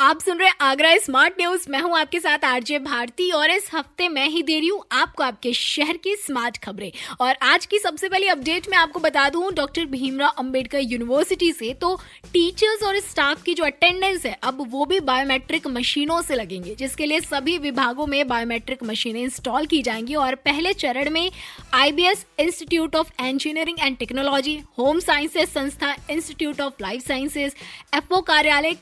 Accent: native